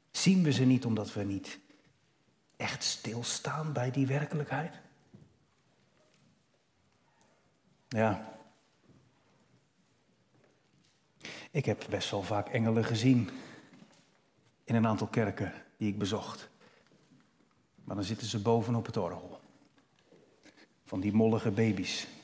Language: Dutch